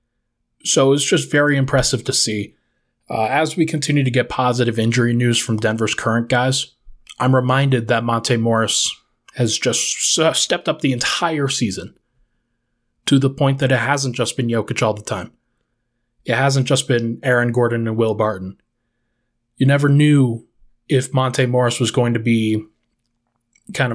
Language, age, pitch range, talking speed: English, 20-39, 120-140 Hz, 160 wpm